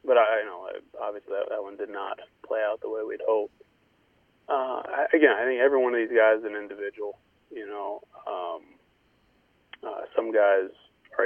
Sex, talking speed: male, 180 wpm